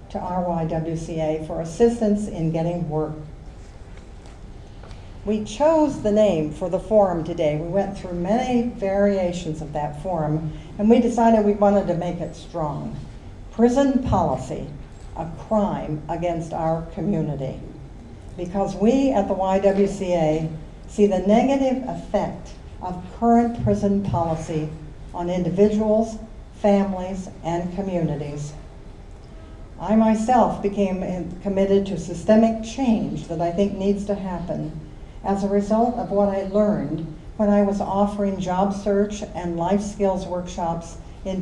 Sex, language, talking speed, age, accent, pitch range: female, English, 130 wpm, 60-79, American, 160-205 Hz